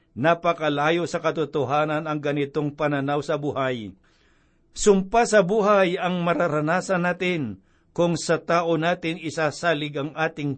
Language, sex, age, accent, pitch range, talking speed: Filipino, male, 50-69, native, 145-175 Hz, 120 wpm